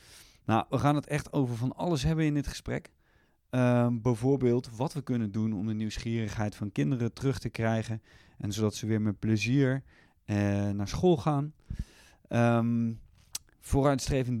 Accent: Dutch